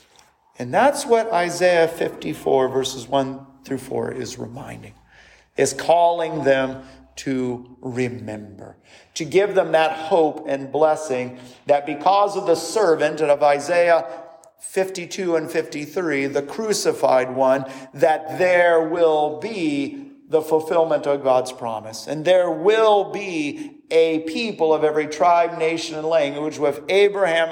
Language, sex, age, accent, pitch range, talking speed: English, male, 40-59, American, 140-190 Hz, 130 wpm